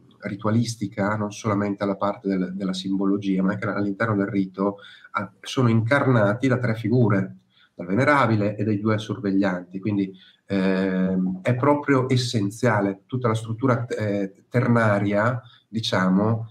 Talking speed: 125 wpm